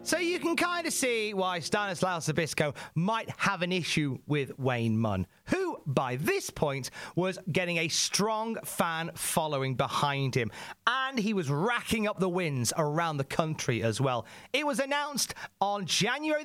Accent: British